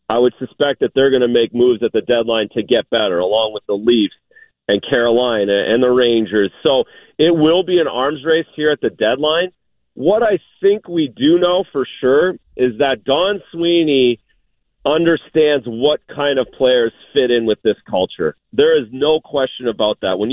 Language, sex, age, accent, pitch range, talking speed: English, male, 40-59, American, 120-170 Hz, 190 wpm